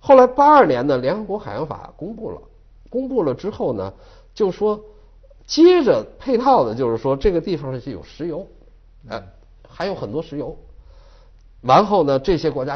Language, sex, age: Chinese, male, 50-69